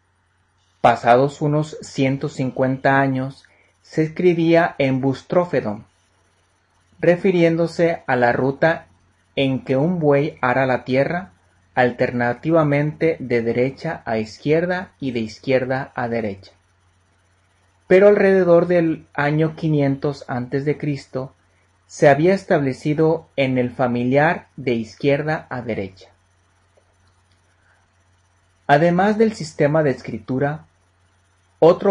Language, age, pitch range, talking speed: Spanish, 30-49, 95-155 Hz, 95 wpm